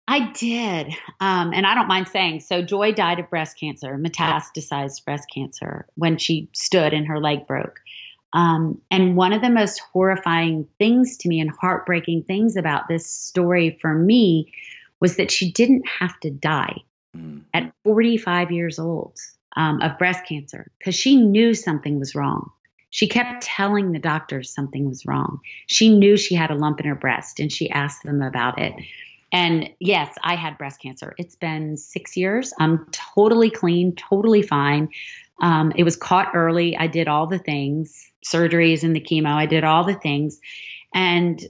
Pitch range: 150-190 Hz